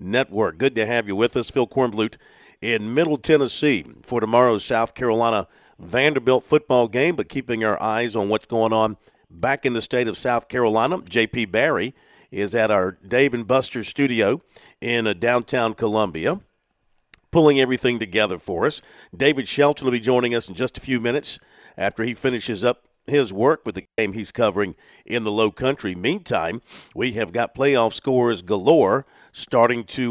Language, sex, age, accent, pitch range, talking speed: English, male, 50-69, American, 110-130 Hz, 175 wpm